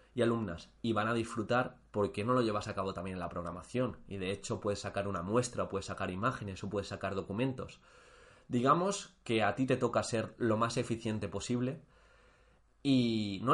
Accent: Spanish